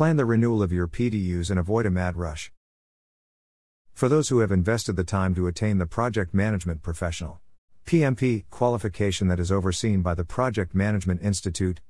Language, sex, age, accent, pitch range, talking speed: English, male, 50-69, American, 90-115 Hz, 170 wpm